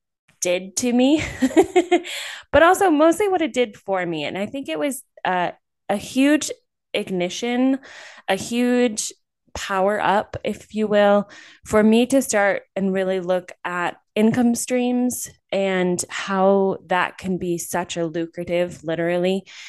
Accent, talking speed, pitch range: American, 140 wpm, 170-240 Hz